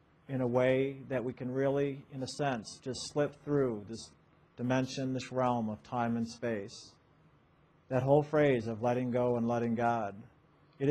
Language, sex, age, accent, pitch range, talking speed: English, male, 50-69, American, 125-140 Hz, 170 wpm